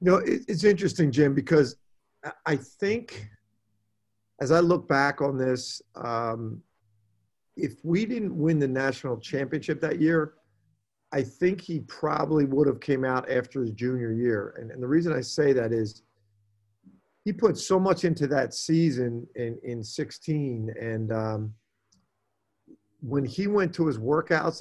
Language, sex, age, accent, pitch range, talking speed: English, male, 50-69, American, 120-160 Hz, 150 wpm